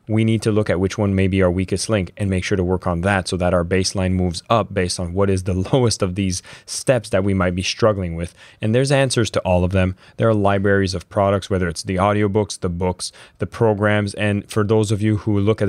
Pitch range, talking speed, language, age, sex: 95-115 Hz, 260 wpm, English, 20-39, male